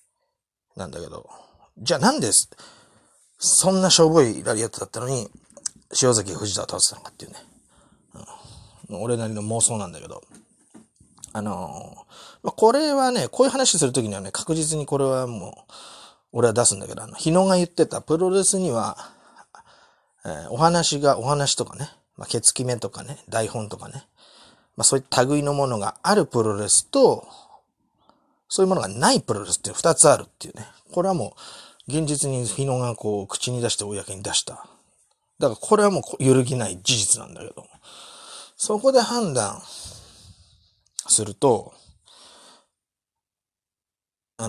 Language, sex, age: Japanese, male, 30-49